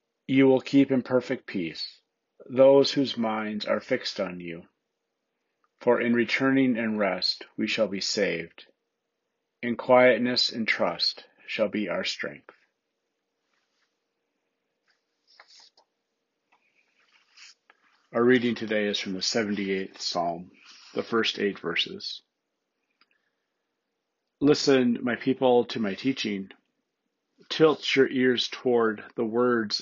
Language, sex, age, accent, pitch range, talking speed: English, male, 40-59, American, 105-125 Hz, 110 wpm